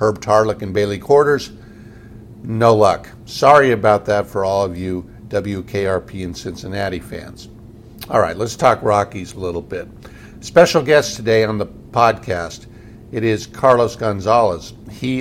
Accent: American